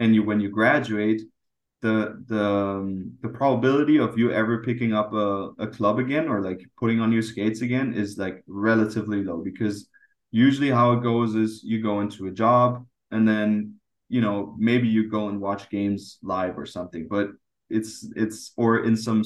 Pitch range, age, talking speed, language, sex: 105-115 Hz, 20-39, 185 wpm, English, male